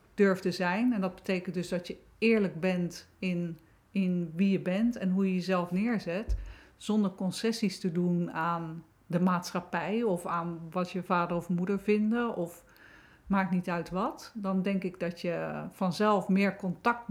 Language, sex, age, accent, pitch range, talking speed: Dutch, female, 50-69, Dutch, 180-215 Hz, 170 wpm